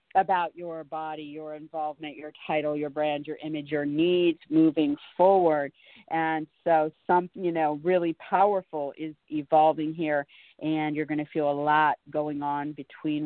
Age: 40-59